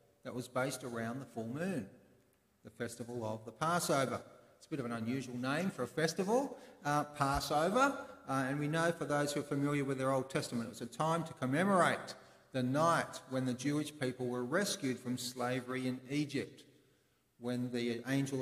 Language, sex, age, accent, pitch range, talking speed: English, male, 40-59, Australian, 120-165 Hz, 190 wpm